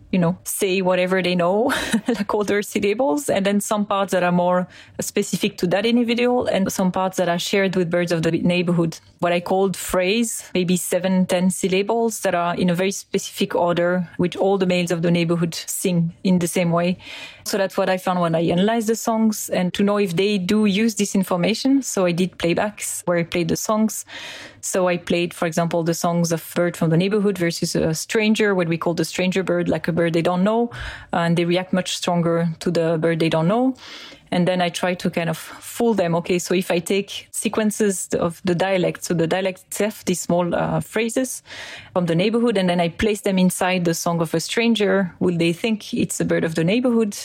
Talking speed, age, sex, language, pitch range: 220 wpm, 30-49, female, English, 175-205 Hz